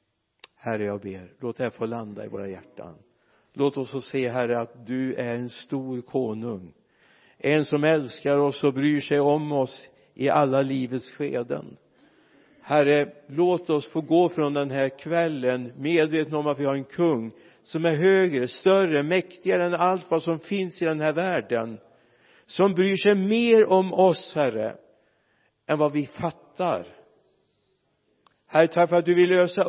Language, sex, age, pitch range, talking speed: Swedish, male, 60-79, 135-165 Hz, 165 wpm